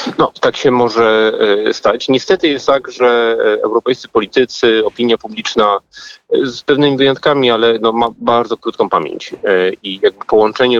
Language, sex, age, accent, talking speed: Polish, male, 40-59, native, 135 wpm